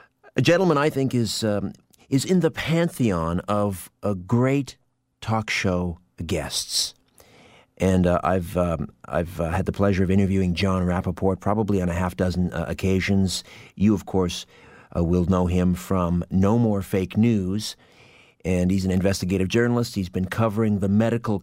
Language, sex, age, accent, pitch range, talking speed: English, male, 50-69, American, 90-105 Hz, 160 wpm